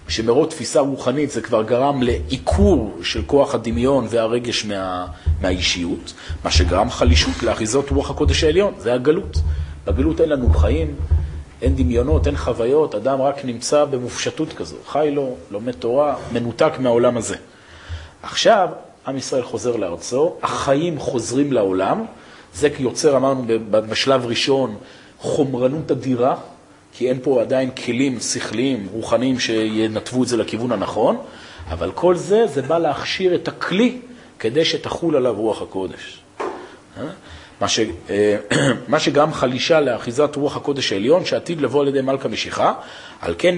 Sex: male